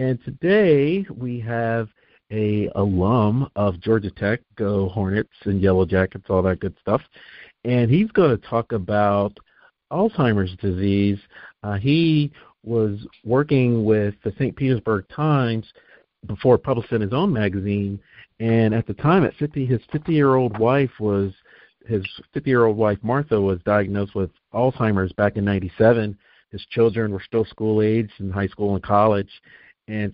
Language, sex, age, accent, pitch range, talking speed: English, male, 50-69, American, 100-115 Hz, 155 wpm